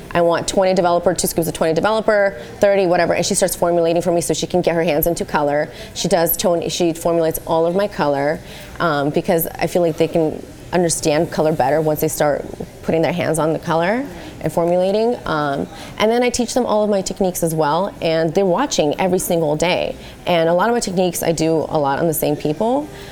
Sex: female